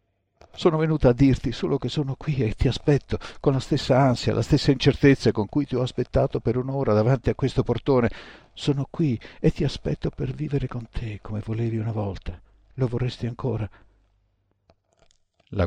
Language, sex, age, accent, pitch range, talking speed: Italian, male, 60-79, native, 95-120 Hz, 175 wpm